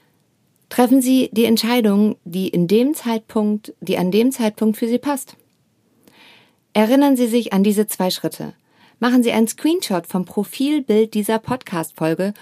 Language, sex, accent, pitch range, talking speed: German, female, German, 205-245 Hz, 145 wpm